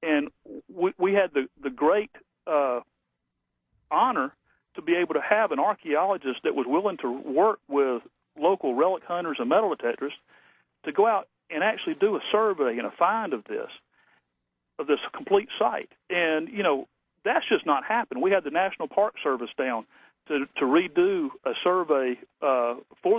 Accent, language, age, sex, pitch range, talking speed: American, English, 40-59, male, 140-230 Hz, 170 wpm